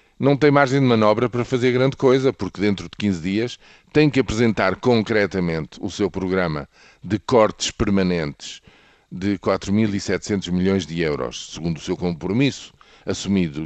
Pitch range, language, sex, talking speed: 90-115 Hz, Portuguese, male, 150 wpm